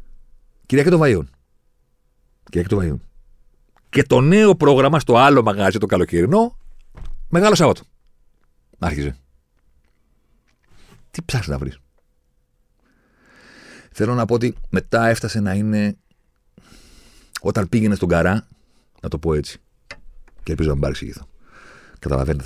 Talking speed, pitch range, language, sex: 110 wpm, 70-95 Hz, Greek, male